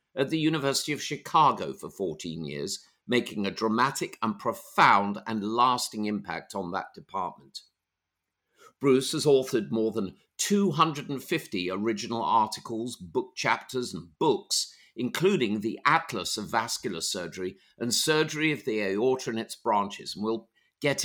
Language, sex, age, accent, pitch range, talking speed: English, male, 50-69, British, 105-140 Hz, 135 wpm